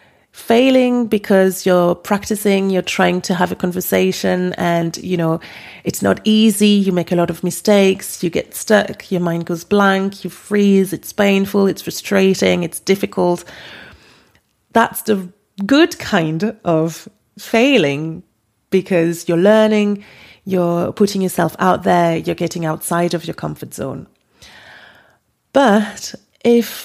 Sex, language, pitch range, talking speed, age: female, English, 175-210 Hz, 135 wpm, 30-49